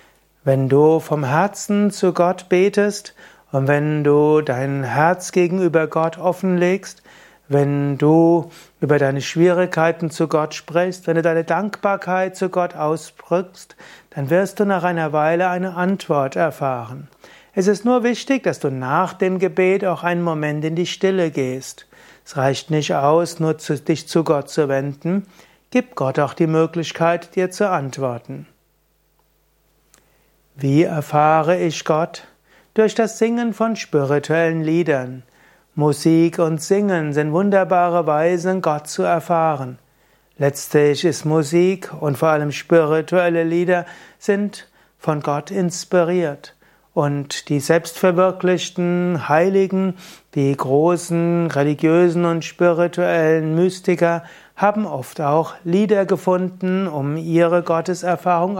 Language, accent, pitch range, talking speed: German, German, 150-180 Hz, 125 wpm